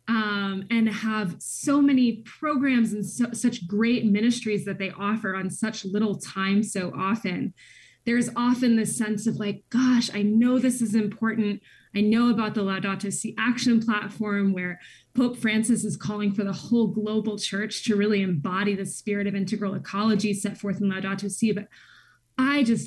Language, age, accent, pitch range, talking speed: English, 20-39, American, 195-235 Hz, 170 wpm